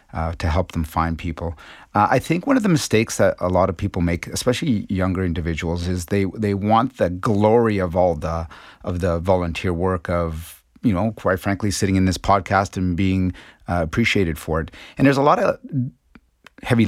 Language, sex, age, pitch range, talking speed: English, male, 30-49, 85-100 Hz, 200 wpm